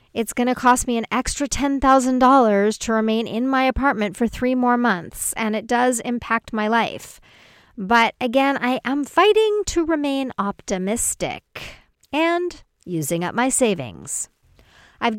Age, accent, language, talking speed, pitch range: 40-59, American, English, 145 wpm, 200-255 Hz